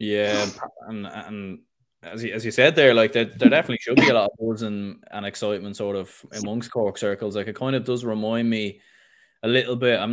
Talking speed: 215 wpm